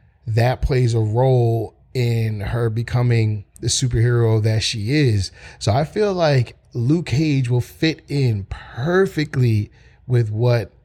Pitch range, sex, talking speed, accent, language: 110-135 Hz, male, 135 wpm, American, English